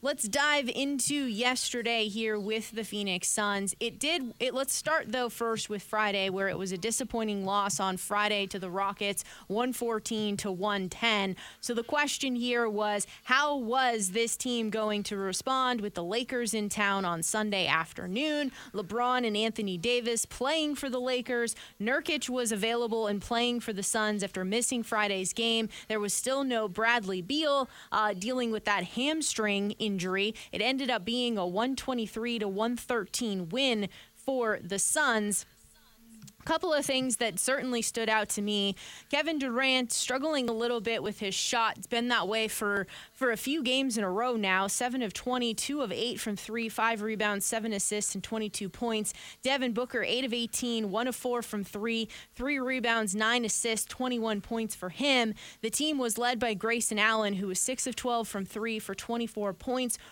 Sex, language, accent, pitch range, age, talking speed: female, English, American, 210-250 Hz, 20-39, 175 wpm